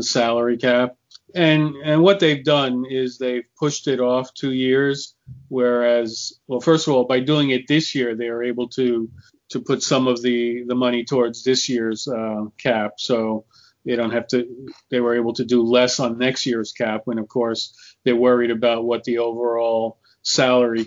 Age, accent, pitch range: 40-59, American, 120-135 Hz